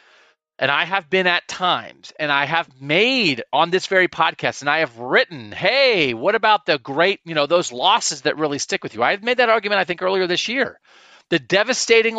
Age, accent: 40-59, American